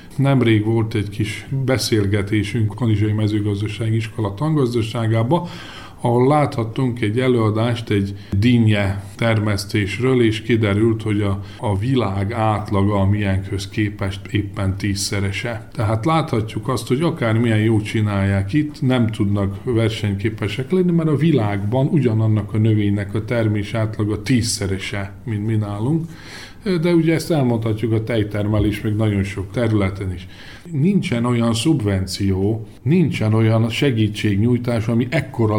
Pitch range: 105-125 Hz